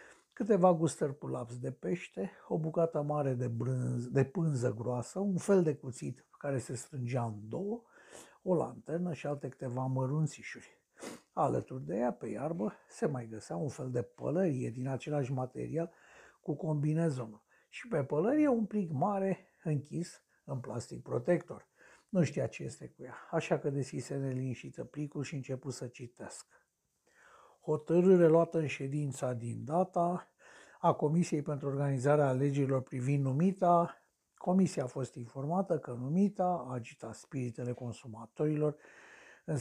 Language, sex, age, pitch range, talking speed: Romanian, male, 60-79, 130-170 Hz, 145 wpm